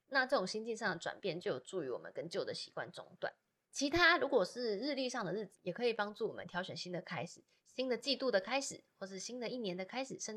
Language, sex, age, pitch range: Chinese, female, 20-39, 180-235 Hz